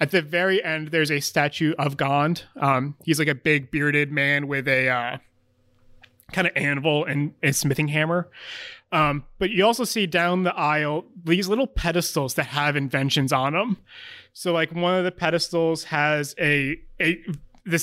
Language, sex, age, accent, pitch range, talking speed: English, male, 20-39, American, 145-175 Hz, 175 wpm